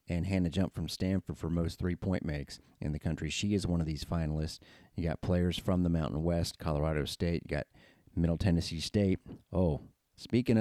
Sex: male